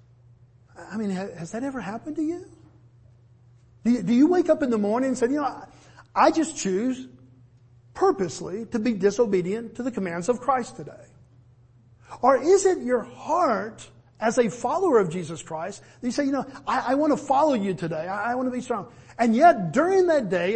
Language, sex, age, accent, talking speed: English, male, 50-69, American, 195 wpm